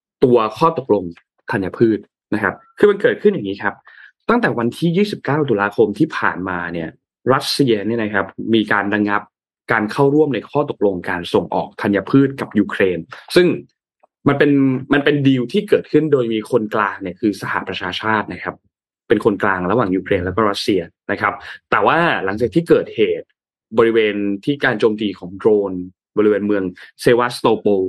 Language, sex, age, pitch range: Thai, male, 20-39, 100-135 Hz